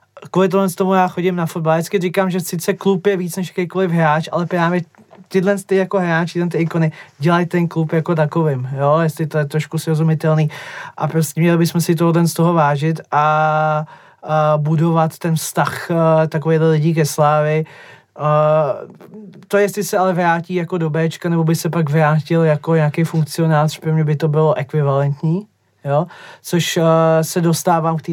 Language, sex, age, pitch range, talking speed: Czech, male, 20-39, 155-170 Hz, 180 wpm